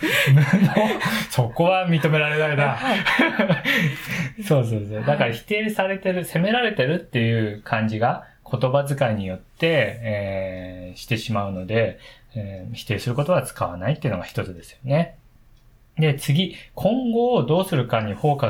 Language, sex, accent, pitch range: Japanese, male, native, 110-160 Hz